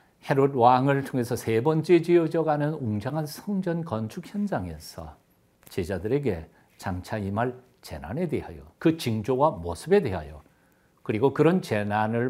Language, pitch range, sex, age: Korean, 100-160 Hz, male, 50-69